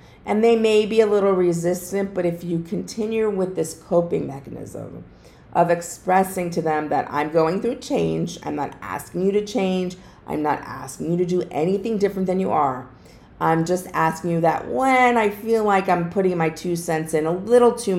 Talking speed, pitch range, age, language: 195 wpm, 155-190 Hz, 40-59, English